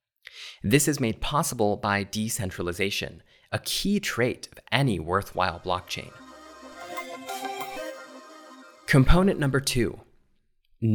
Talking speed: 90 wpm